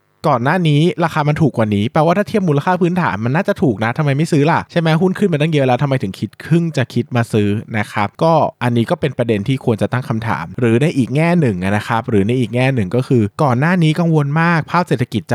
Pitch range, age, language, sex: 110-155 Hz, 20-39, Thai, male